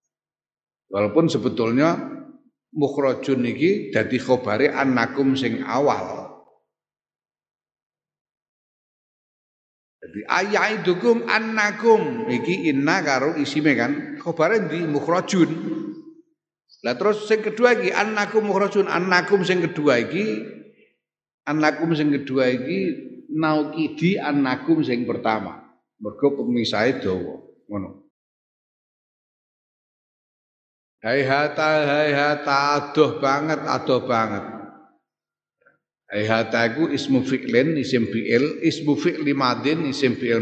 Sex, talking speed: male, 90 wpm